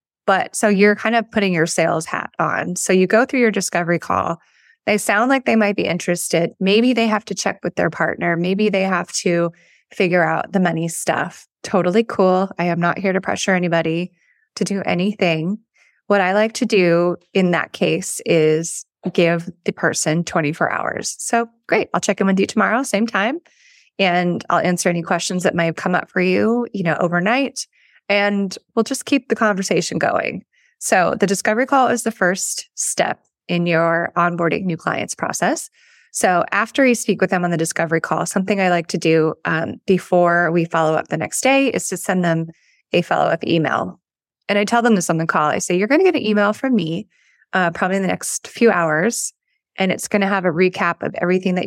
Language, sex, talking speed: English, female, 205 wpm